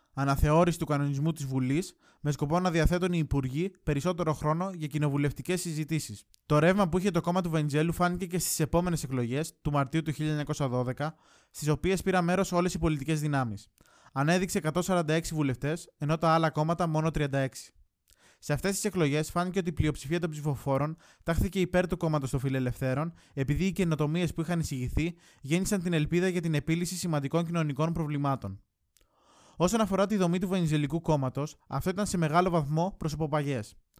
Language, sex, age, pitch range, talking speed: Greek, male, 20-39, 145-175 Hz, 165 wpm